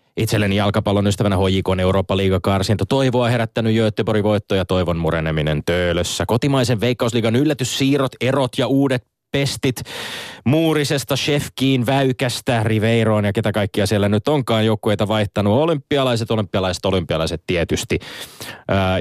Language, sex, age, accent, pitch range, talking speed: Finnish, male, 20-39, native, 95-120 Hz, 120 wpm